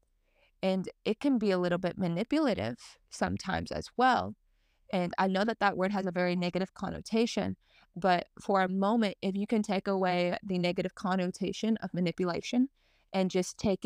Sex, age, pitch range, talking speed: female, 20-39, 180-215 Hz, 170 wpm